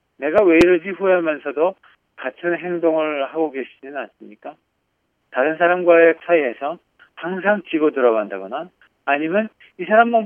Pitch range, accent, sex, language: 135-180 Hz, native, male, Korean